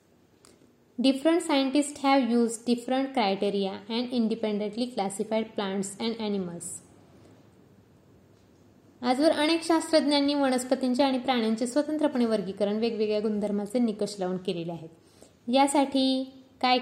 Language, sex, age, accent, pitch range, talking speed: Marathi, female, 20-39, native, 210-255 Hz, 105 wpm